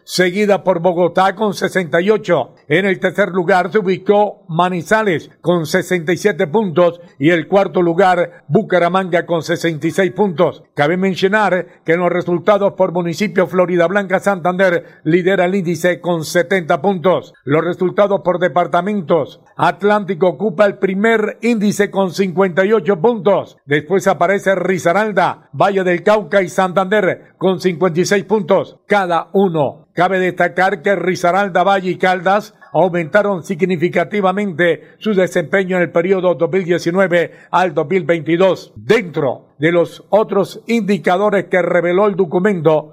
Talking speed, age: 125 wpm, 50-69